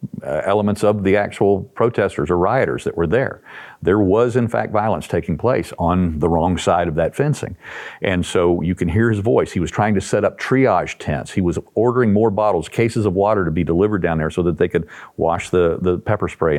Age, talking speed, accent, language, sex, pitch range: 50-69, 225 wpm, American, English, male, 90-110 Hz